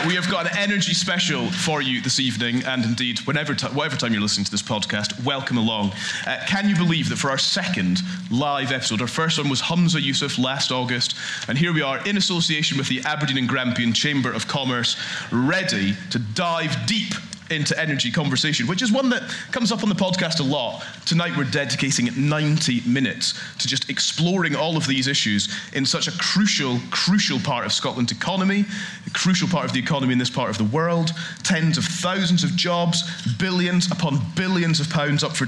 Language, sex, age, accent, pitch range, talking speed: English, male, 30-49, British, 130-180 Hz, 200 wpm